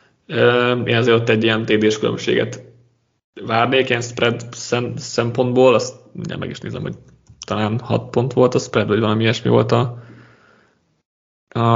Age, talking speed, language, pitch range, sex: 20-39, 155 wpm, Hungarian, 110-130 Hz, male